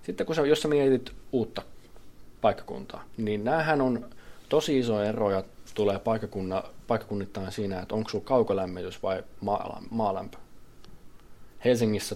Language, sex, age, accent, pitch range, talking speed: Finnish, male, 20-39, native, 100-120 Hz, 115 wpm